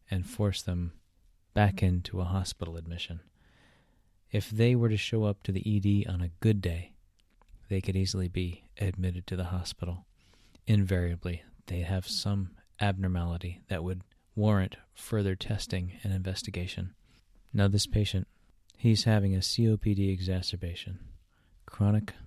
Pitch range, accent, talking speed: 90-105 Hz, American, 135 wpm